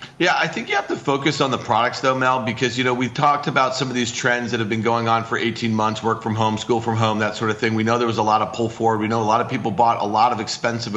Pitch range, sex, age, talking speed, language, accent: 120-150 Hz, male, 40-59, 330 wpm, English, American